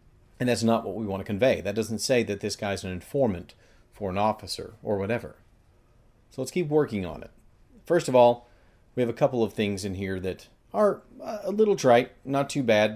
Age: 40-59